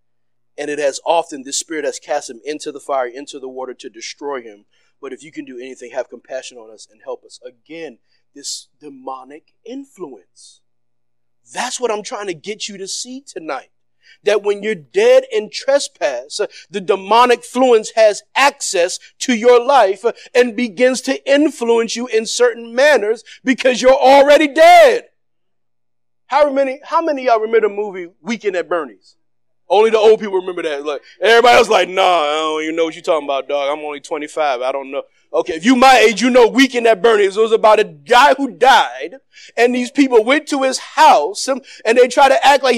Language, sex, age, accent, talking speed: English, male, 40-59, American, 190 wpm